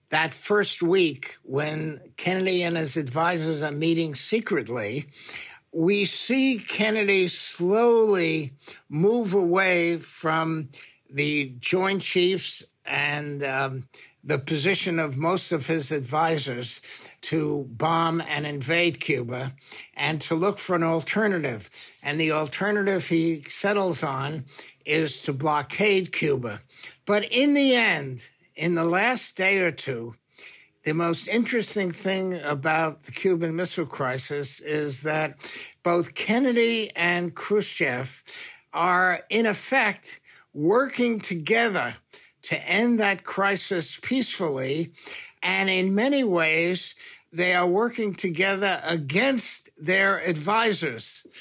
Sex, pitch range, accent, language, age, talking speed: male, 150-195 Hz, American, English, 60-79, 115 wpm